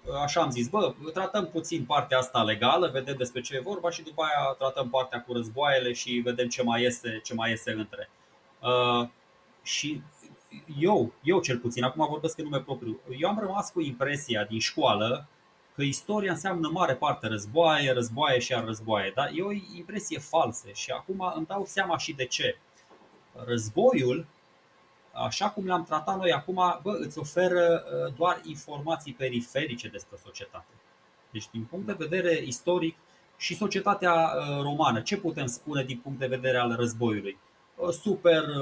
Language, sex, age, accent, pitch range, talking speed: Romanian, male, 20-39, native, 125-170 Hz, 155 wpm